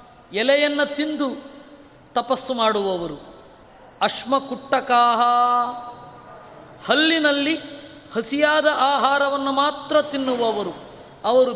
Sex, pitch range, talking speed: female, 220-265 Hz, 55 wpm